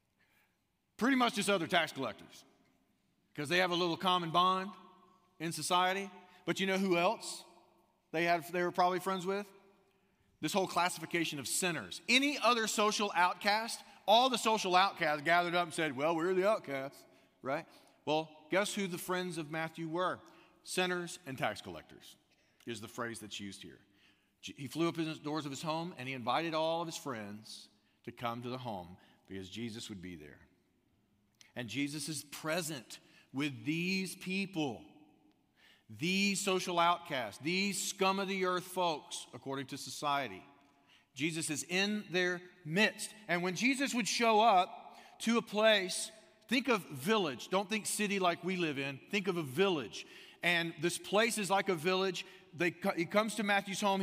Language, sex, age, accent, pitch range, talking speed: English, male, 40-59, American, 150-195 Hz, 165 wpm